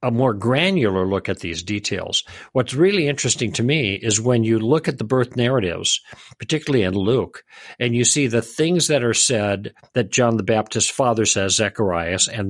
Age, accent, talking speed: 50-69, American, 185 wpm